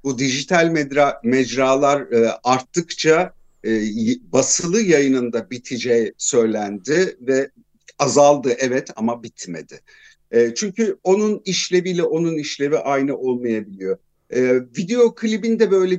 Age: 50-69